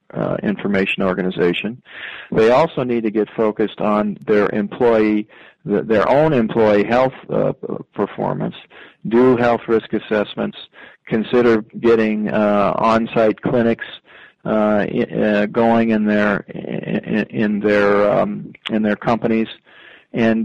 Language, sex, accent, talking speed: English, male, American, 110 wpm